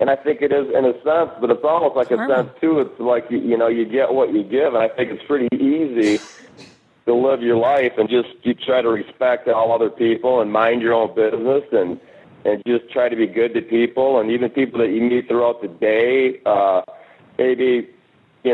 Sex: male